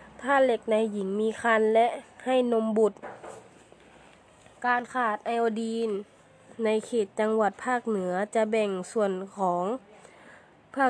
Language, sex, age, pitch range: Thai, female, 20-39, 210-235 Hz